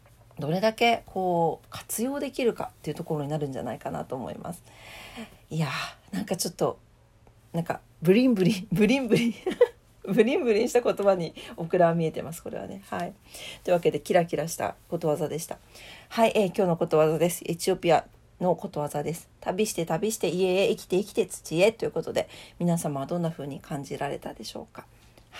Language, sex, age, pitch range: Japanese, female, 40-59, 160-230 Hz